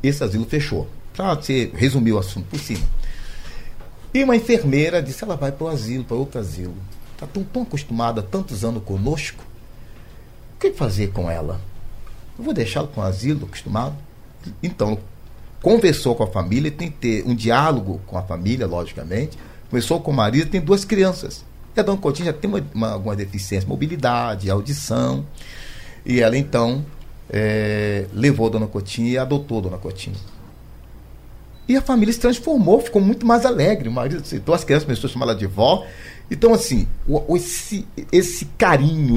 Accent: Brazilian